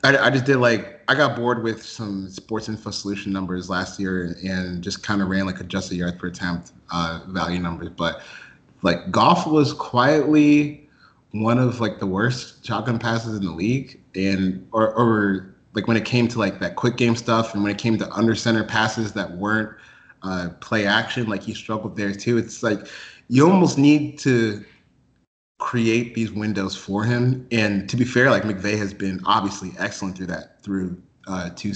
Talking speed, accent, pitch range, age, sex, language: 190 wpm, American, 95-115 Hz, 30-49, male, English